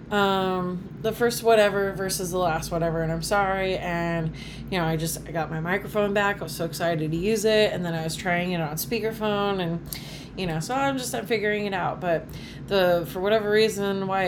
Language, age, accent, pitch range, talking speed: English, 30-49, American, 165-220 Hz, 220 wpm